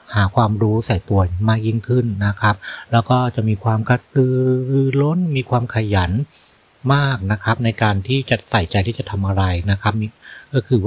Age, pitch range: 30-49, 100-120 Hz